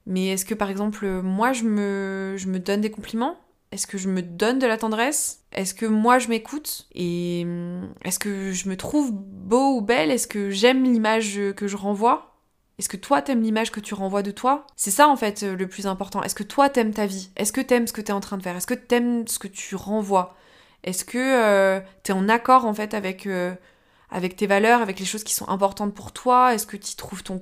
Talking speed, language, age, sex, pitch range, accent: 240 wpm, French, 20-39, female, 190-230 Hz, French